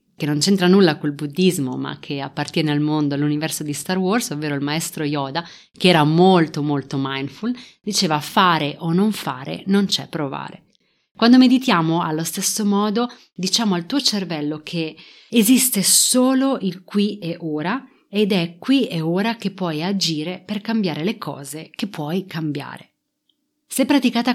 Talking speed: 160 wpm